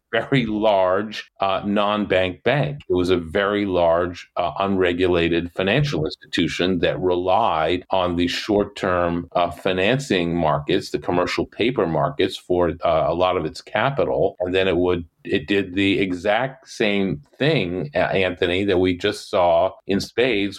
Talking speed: 150 wpm